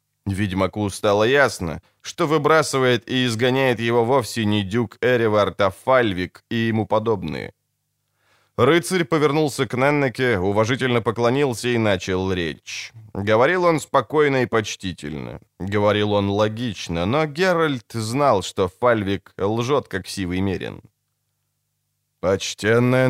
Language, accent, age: Ukrainian, native, 20-39